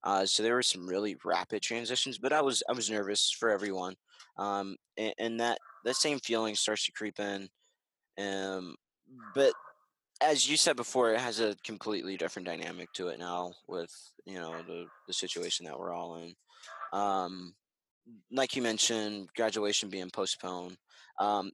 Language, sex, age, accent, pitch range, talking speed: English, male, 20-39, American, 90-120 Hz, 165 wpm